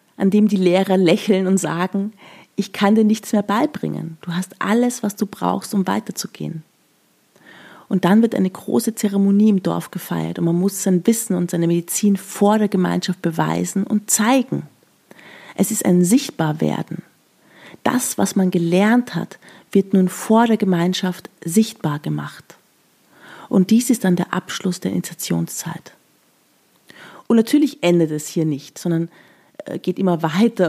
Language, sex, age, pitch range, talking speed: German, female, 30-49, 170-200 Hz, 155 wpm